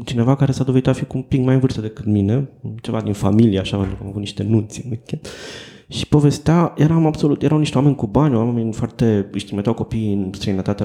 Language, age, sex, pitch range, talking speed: Romanian, 20-39, male, 105-140 Hz, 210 wpm